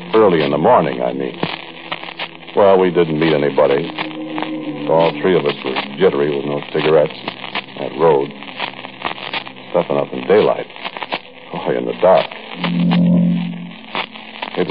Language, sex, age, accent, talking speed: English, male, 60-79, American, 135 wpm